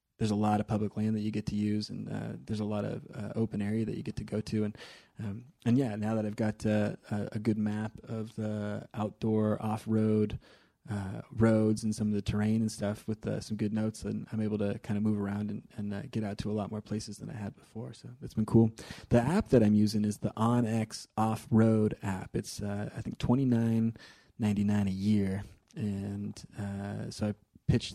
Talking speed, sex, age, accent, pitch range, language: 225 wpm, male, 20-39, American, 105-115 Hz, English